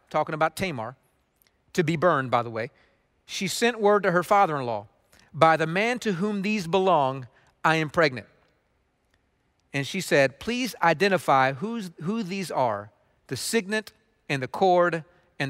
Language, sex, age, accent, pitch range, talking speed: English, male, 40-59, American, 155-215 Hz, 155 wpm